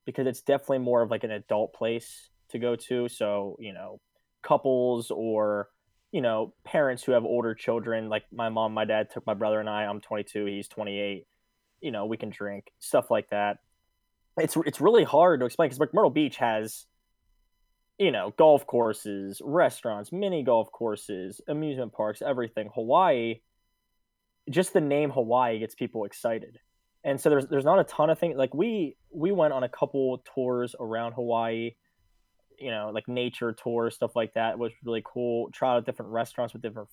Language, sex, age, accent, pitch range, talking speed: English, male, 10-29, American, 105-130 Hz, 180 wpm